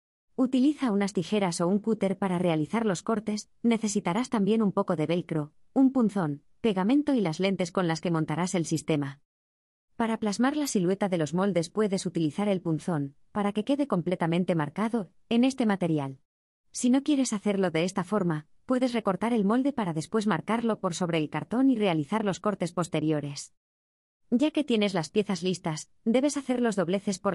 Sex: female